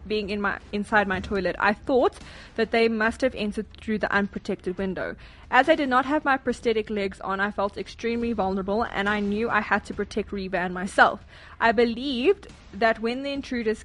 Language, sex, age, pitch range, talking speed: English, female, 20-39, 195-235 Hz, 200 wpm